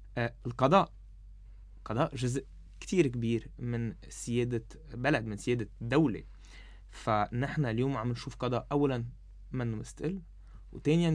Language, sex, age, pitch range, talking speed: Arabic, male, 20-39, 110-140 Hz, 110 wpm